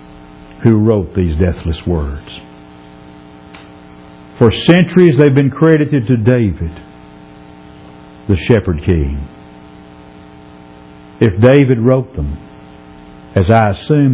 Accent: American